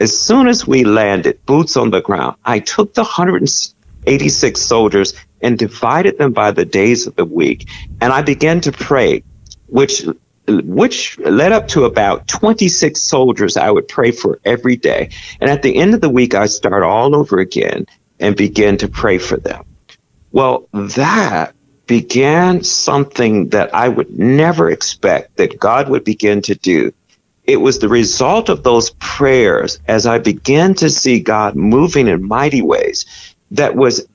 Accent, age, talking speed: American, 50-69, 165 wpm